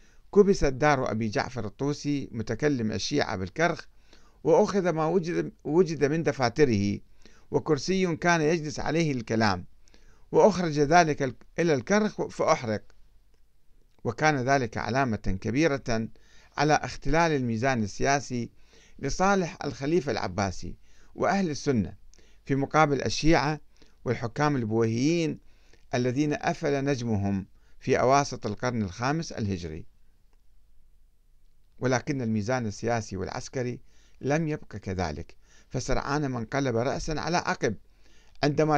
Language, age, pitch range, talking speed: Arabic, 50-69, 110-155 Hz, 95 wpm